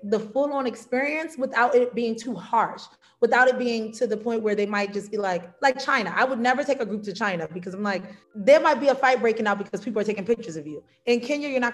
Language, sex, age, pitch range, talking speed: Swahili, female, 30-49, 210-255 Hz, 265 wpm